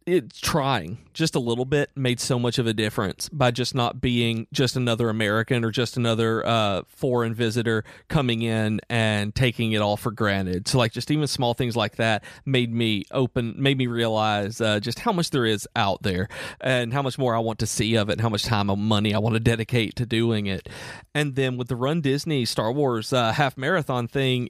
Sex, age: male, 40-59